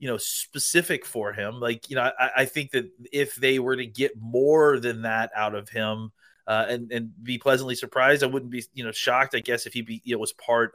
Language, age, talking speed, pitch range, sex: English, 30-49, 250 wpm, 110-125 Hz, male